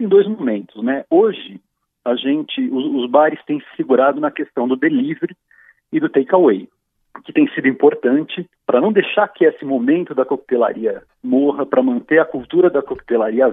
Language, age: Portuguese, 40-59